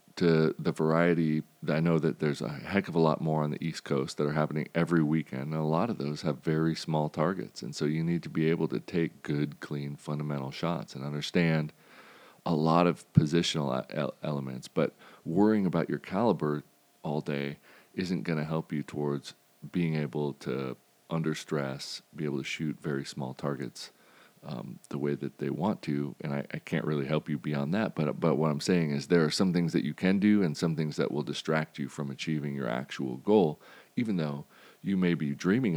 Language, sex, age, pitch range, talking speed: English, male, 40-59, 70-80 Hz, 210 wpm